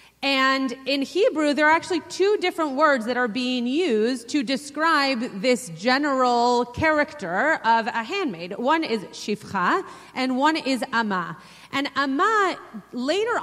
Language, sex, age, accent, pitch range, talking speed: English, female, 30-49, American, 230-300 Hz, 140 wpm